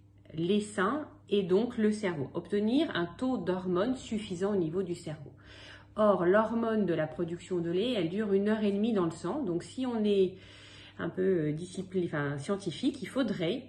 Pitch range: 165-220 Hz